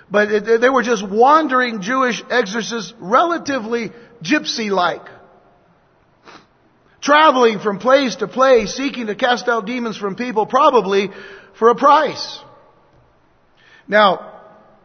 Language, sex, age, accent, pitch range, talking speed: English, male, 50-69, American, 170-235 Hz, 105 wpm